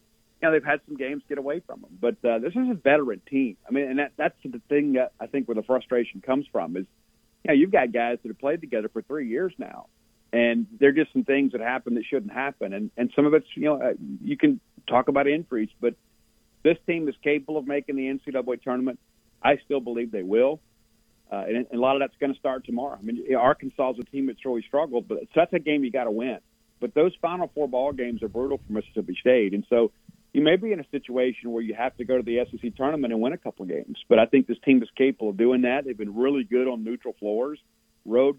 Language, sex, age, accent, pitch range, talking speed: English, male, 50-69, American, 120-145 Hz, 260 wpm